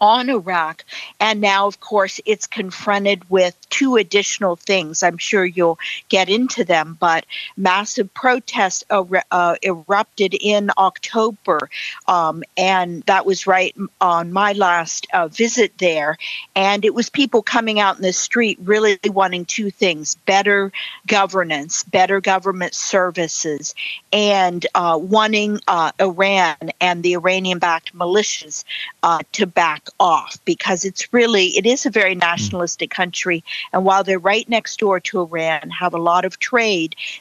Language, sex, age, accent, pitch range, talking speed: English, female, 50-69, American, 180-210 Hz, 145 wpm